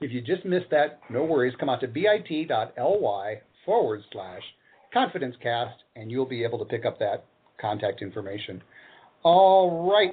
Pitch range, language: 130-200 Hz, English